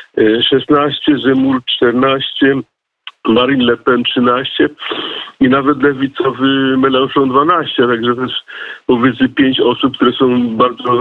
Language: Polish